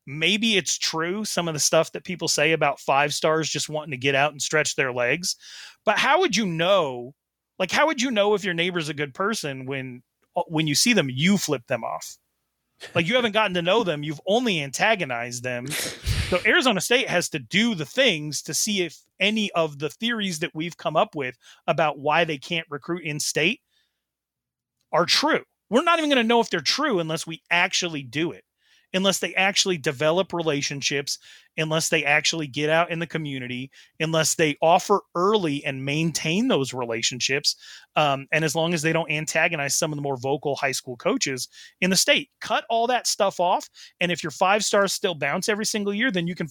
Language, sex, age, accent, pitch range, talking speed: English, male, 30-49, American, 145-195 Hz, 205 wpm